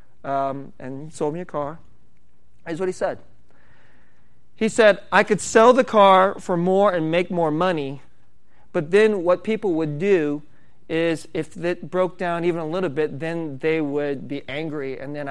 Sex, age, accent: male, 40-59, American